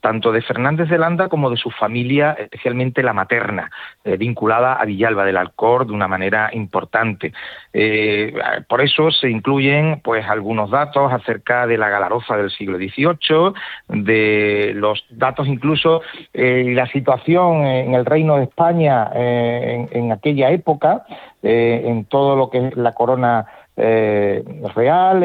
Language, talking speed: Spanish, 155 wpm